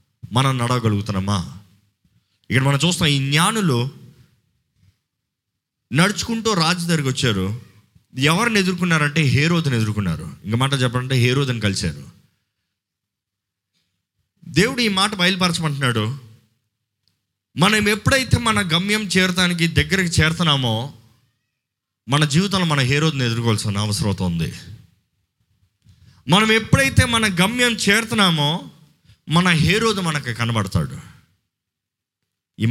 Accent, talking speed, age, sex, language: native, 90 wpm, 30-49, male, Telugu